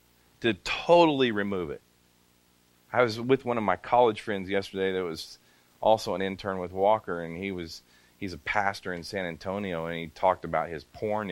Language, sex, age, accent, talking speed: English, male, 30-49, American, 180 wpm